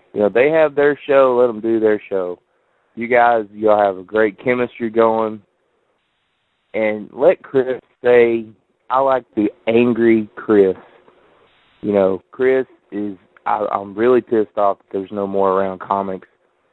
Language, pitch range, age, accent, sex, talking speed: English, 100-120 Hz, 20-39, American, male, 155 wpm